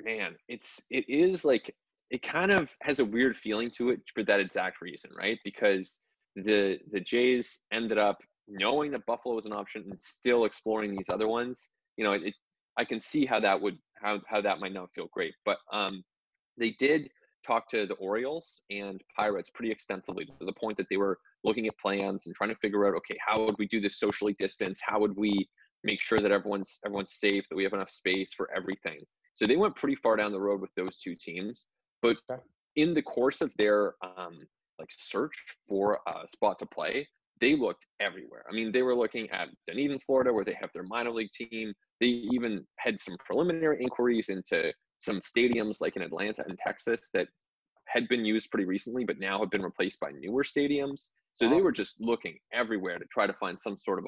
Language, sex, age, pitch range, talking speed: English, male, 20-39, 100-125 Hz, 210 wpm